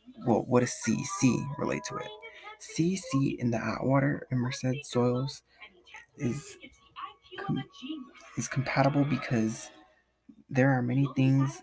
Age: 20-39